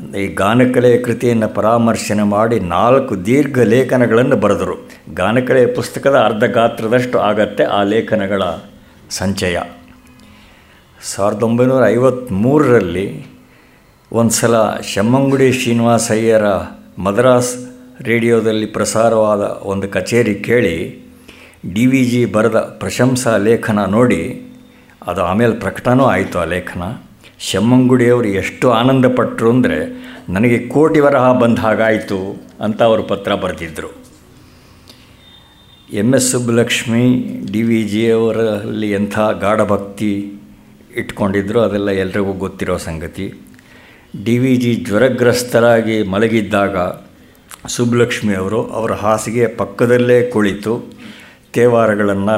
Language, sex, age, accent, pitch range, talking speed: Kannada, male, 60-79, native, 100-120 Hz, 95 wpm